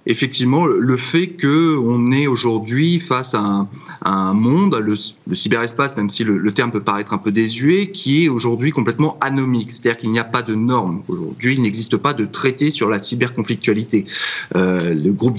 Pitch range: 110-135 Hz